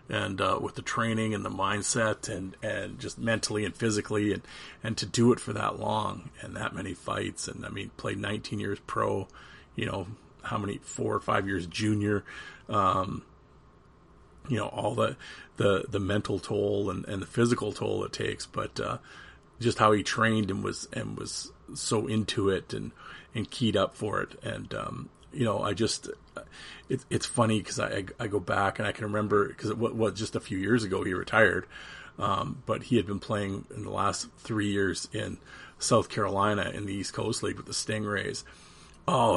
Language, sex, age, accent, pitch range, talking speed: English, male, 40-59, American, 100-115 Hz, 195 wpm